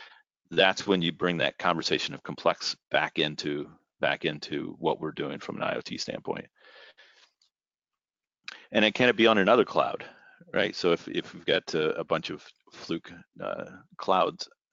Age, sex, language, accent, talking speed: 40-59, male, English, American, 165 wpm